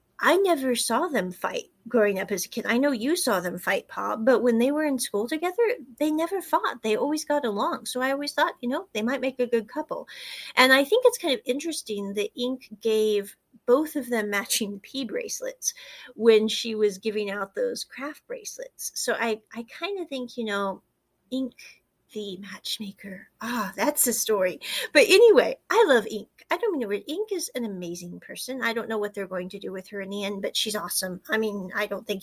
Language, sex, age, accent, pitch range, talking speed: English, female, 30-49, American, 210-295 Hz, 220 wpm